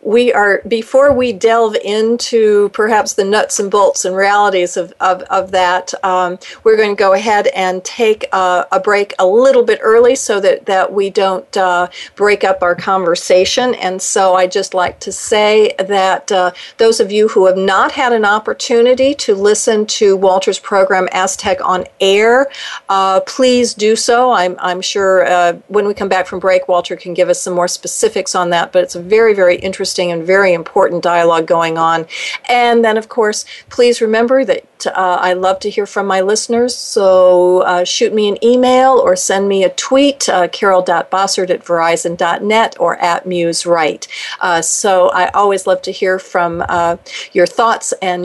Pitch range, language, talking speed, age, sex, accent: 180-220 Hz, English, 185 wpm, 50-69, female, American